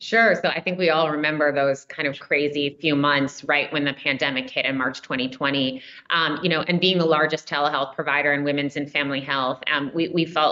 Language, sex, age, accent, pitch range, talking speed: English, female, 30-49, American, 145-165 Hz, 220 wpm